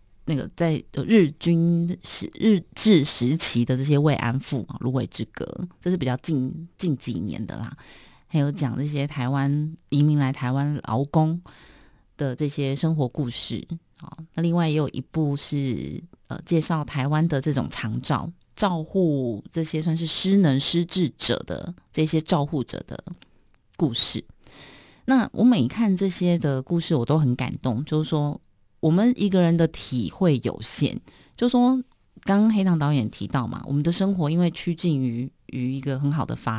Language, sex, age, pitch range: Chinese, female, 30-49, 135-175 Hz